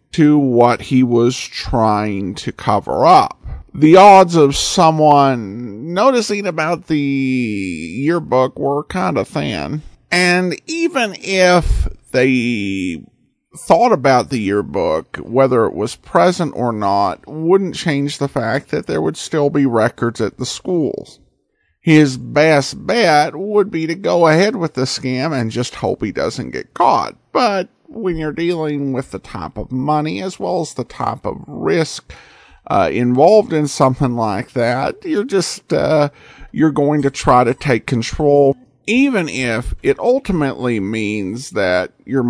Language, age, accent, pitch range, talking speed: English, 50-69, American, 120-170 Hz, 150 wpm